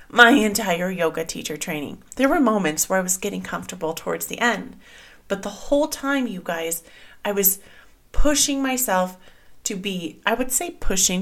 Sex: female